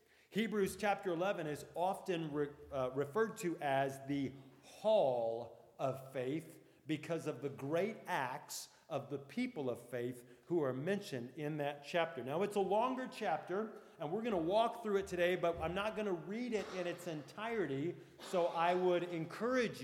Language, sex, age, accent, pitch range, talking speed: English, male, 40-59, American, 145-200 Hz, 170 wpm